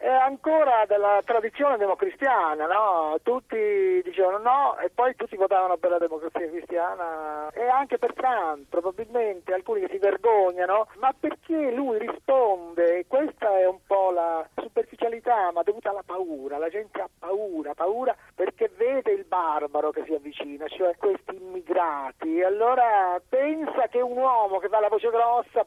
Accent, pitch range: native, 180-285 Hz